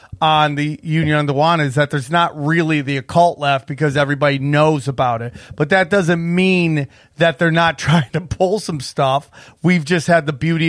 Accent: American